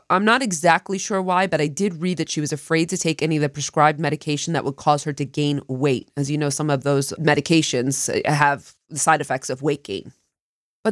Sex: female